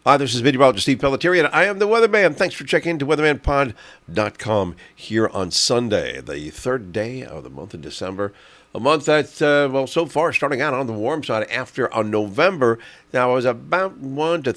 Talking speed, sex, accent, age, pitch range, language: 200 wpm, male, American, 50-69, 105-145 Hz, English